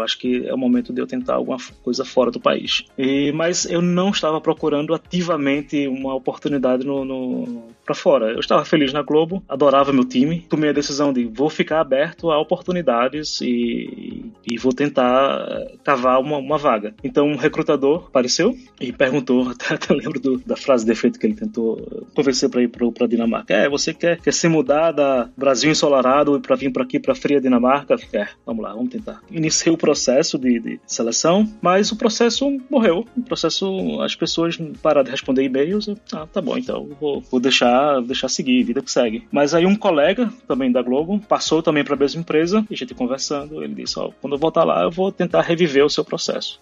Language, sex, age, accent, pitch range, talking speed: Portuguese, male, 20-39, Brazilian, 125-170 Hz, 205 wpm